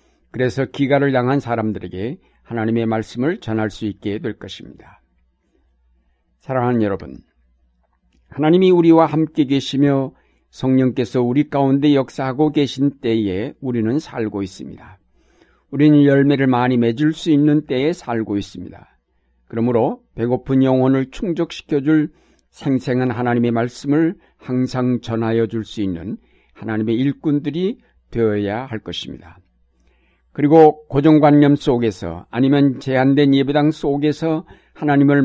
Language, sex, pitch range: Korean, male, 110-145 Hz